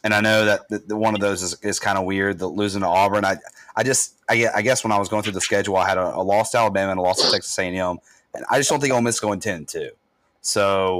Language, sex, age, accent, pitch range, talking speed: English, male, 30-49, American, 95-115 Hz, 300 wpm